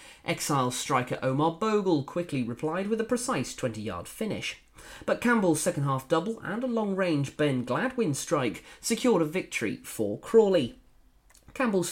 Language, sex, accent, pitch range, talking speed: English, male, British, 140-220 Hz, 135 wpm